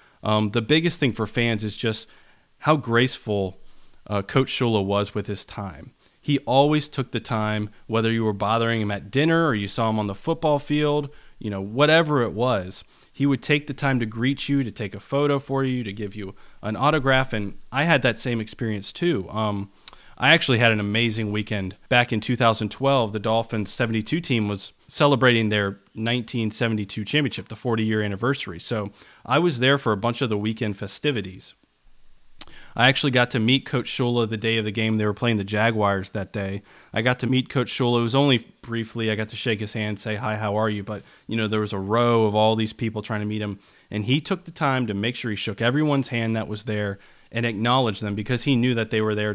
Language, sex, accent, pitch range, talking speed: English, male, American, 105-130 Hz, 220 wpm